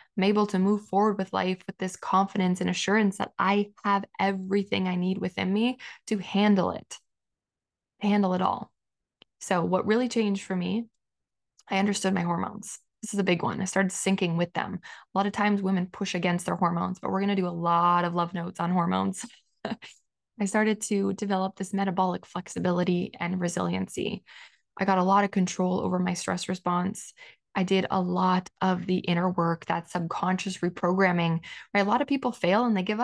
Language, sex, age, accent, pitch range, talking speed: English, female, 20-39, American, 185-200 Hz, 195 wpm